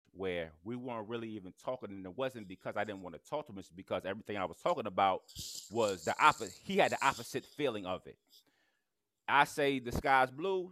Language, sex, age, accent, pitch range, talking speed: English, male, 30-49, American, 95-120 Hz, 220 wpm